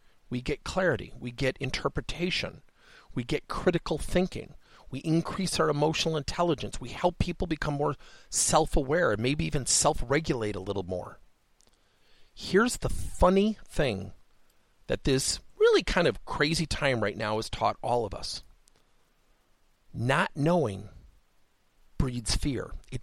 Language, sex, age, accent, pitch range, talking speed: English, male, 50-69, American, 115-175 Hz, 135 wpm